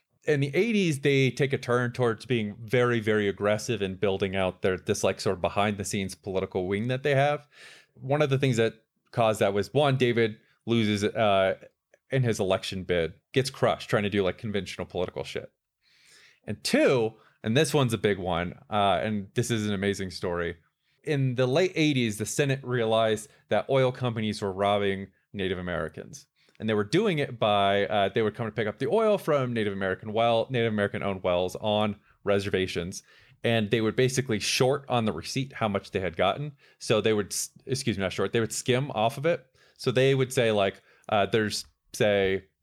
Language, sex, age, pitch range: English, male, 20-39, 100-130 Hz